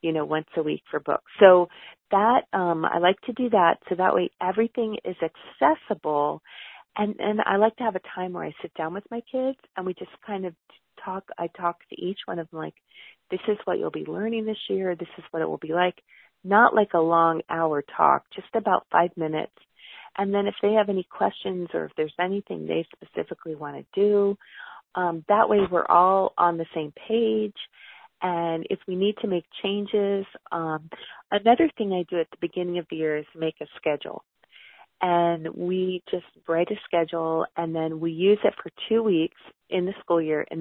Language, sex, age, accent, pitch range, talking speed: English, female, 40-59, American, 160-200 Hz, 210 wpm